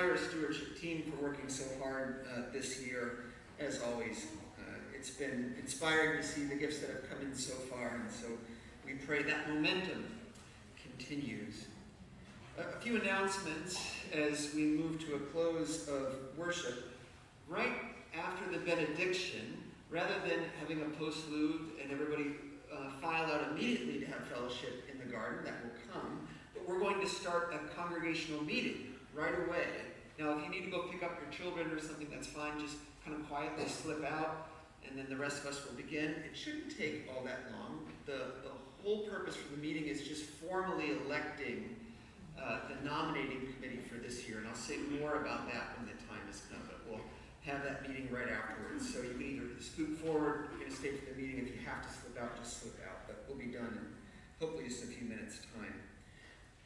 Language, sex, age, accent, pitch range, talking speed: English, male, 40-59, American, 130-160 Hz, 190 wpm